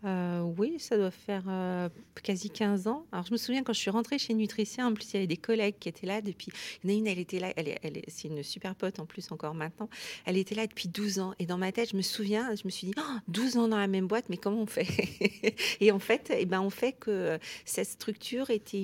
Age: 40-59